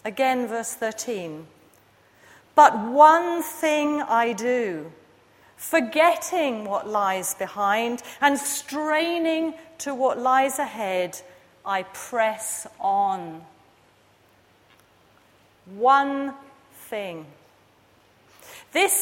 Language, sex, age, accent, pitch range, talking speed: English, female, 40-59, British, 215-310 Hz, 75 wpm